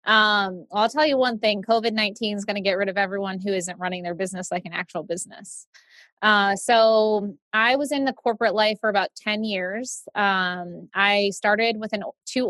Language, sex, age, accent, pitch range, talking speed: English, female, 20-39, American, 195-220 Hz, 195 wpm